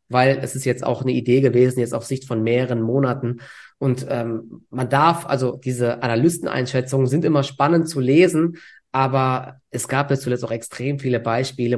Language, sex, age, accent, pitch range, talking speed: German, male, 20-39, German, 120-140 Hz, 180 wpm